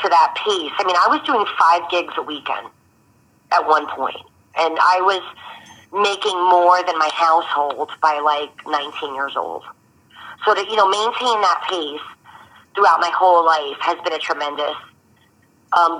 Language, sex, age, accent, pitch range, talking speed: English, female, 40-59, American, 155-185 Hz, 165 wpm